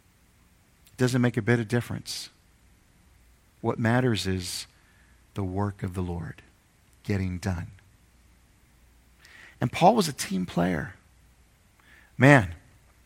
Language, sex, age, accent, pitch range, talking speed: English, male, 50-69, American, 100-155 Hz, 105 wpm